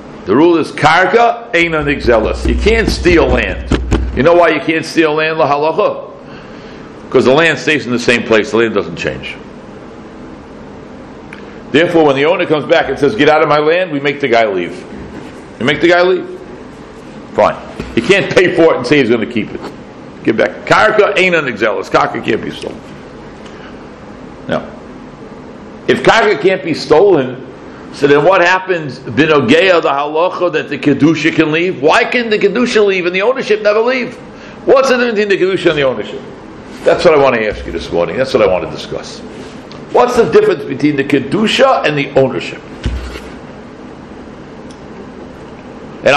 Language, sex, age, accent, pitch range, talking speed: English, male, 60-79, American, 145-230 Hz, 175 wpm